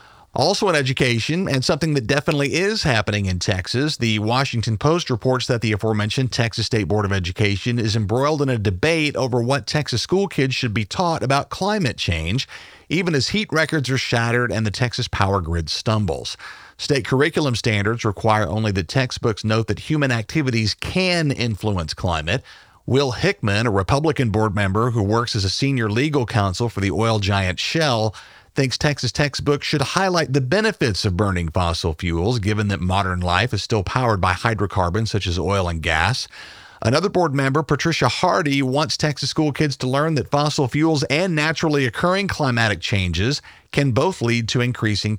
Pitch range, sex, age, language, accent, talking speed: 105-145 Hz, male, 40-59, English, American, 175 wpm